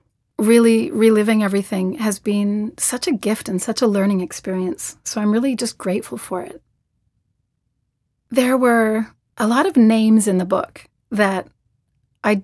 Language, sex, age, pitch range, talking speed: English, female, 30-49, 190-230 Hz, 150 wpm